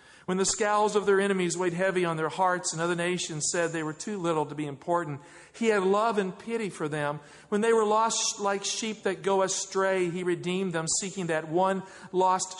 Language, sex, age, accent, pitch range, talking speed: English, male, 50-69, American, 170-210 Hz, 215 wpm